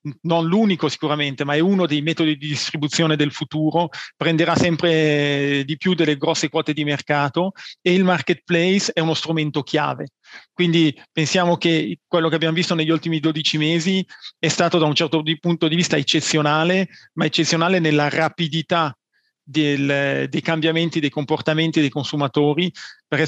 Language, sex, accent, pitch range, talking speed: Italian, male, native, 150-170 Hz, 150 wpm